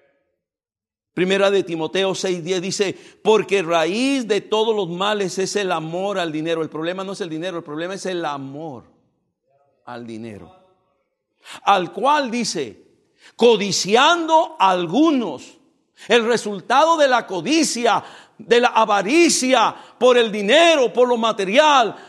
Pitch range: 175-255 Hz